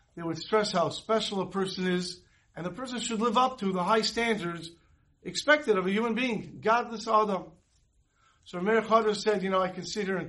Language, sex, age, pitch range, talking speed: English, male, 50-69, 160-215 Hz, 205 wpm